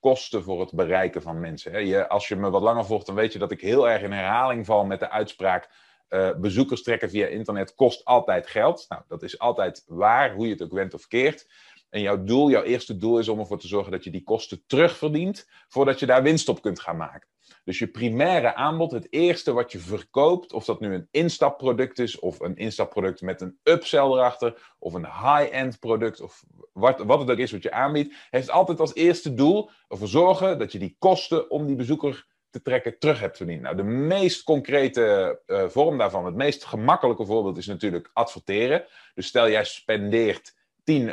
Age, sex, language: 30-49, male, Dutch